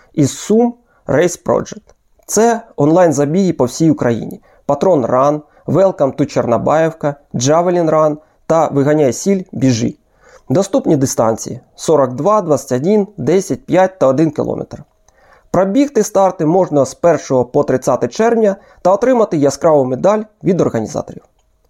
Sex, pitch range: male, 140-190 Hz